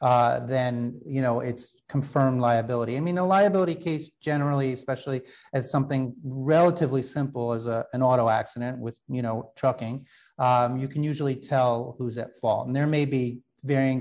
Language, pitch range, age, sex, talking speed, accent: English, 120-140 Hz, 30-49, male, 170 wpm, American